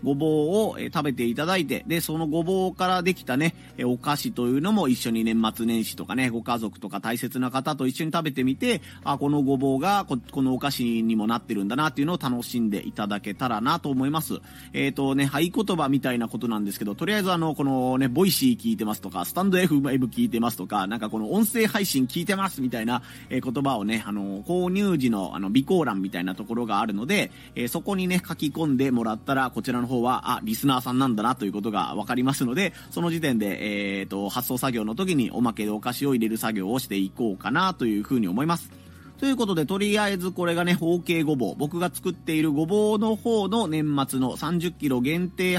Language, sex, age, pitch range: Japanese, male, 30-49, 115-175 Hz